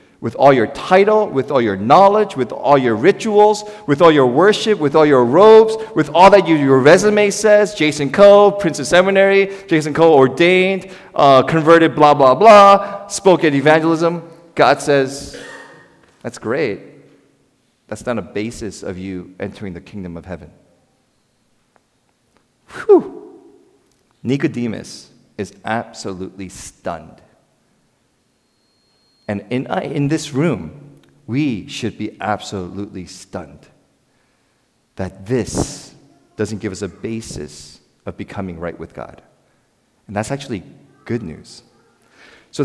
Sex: male